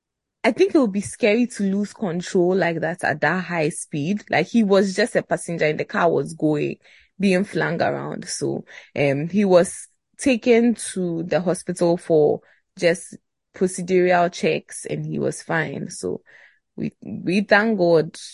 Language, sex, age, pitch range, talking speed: English, female, 20-39, 165-210 Hz, 165 wpm